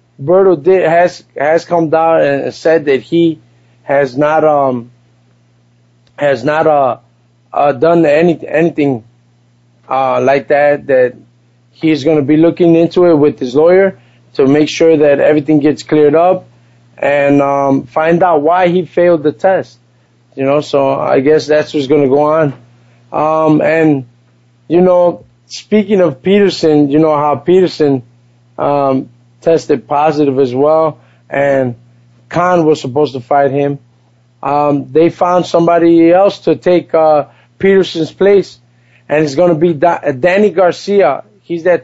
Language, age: English, 20-39